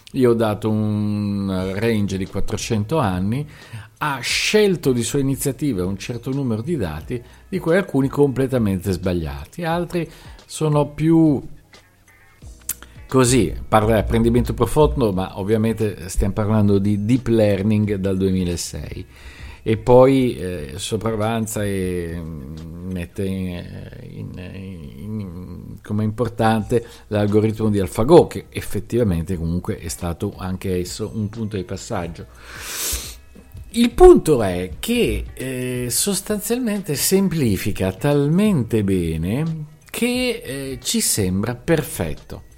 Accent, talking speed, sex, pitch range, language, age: native, 110 wpm, male, 95-140 Hz, Italian, 50-69